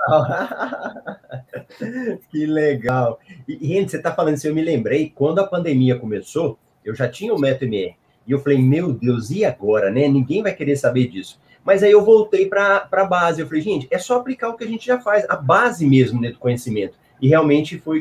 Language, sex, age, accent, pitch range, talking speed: Portuguese, male, 30-49, Brazilian, 135-190 Hz, 200 wpm